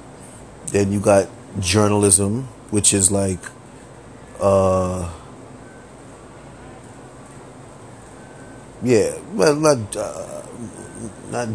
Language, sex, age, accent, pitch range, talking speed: English, male, 30-49, American, 100-125 Hz, 70 wpm